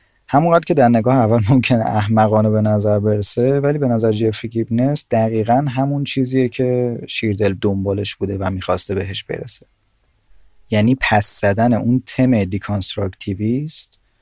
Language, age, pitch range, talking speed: Persian, 30-49, 100-125 Hz, 140 wpm